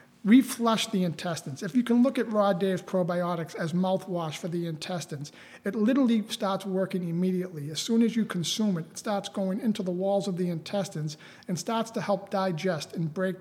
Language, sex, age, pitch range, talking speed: English, male, 40-59, 170-210 Hz, 190 wpm